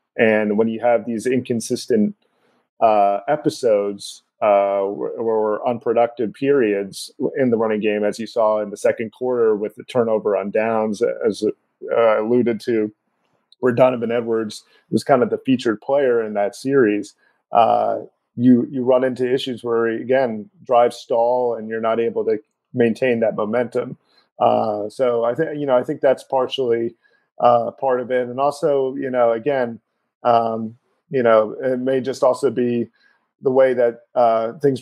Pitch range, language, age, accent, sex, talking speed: 115-130 Hz, English, 40-59, American, male, 165 wpm